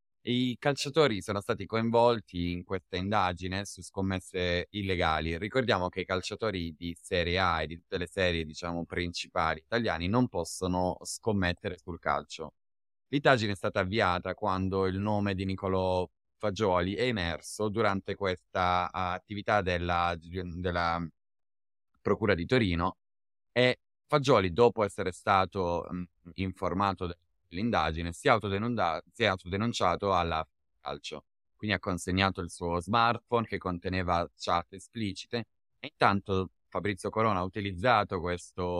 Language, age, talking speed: Italian, 30-49, 130 wpm